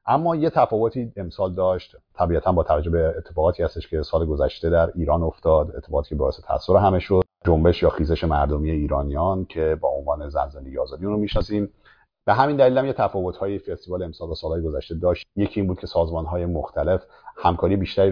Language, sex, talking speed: Persian, male, 185 wpm